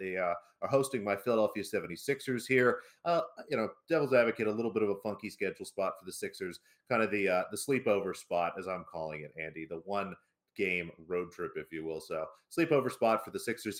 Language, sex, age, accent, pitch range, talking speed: English, male, 30-49, American, 95-115 Hz, 220 wpm